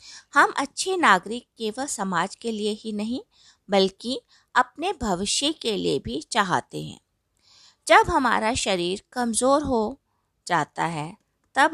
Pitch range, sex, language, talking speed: 195-290 Hz, female, Hindi, 130 wpm